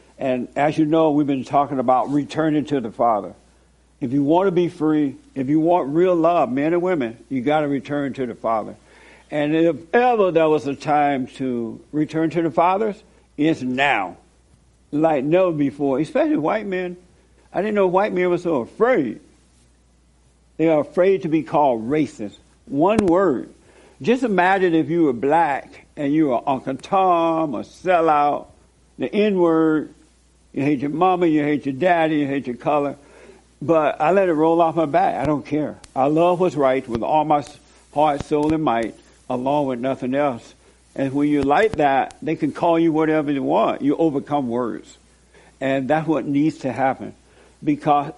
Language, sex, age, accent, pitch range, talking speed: English, male, 60-79, American, 135-165 Hz, 180 wpm